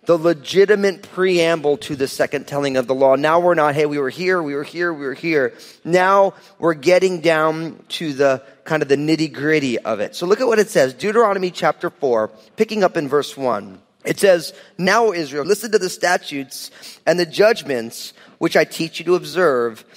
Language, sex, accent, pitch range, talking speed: English, male, American, 140-195 Hz, 200 wpm